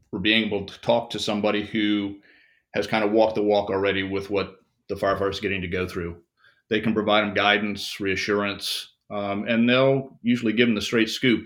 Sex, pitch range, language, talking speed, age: male, 100-115 Hz, English, 205 wpm, 40-59